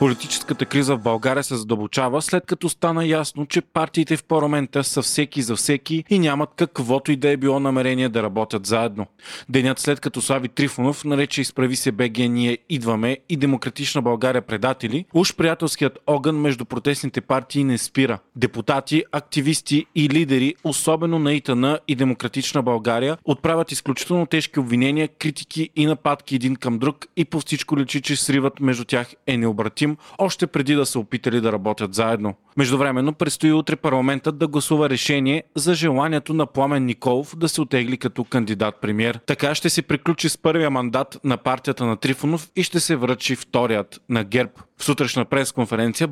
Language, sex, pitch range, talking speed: Bulgarian, male, 125-155 Hz, 165 wpm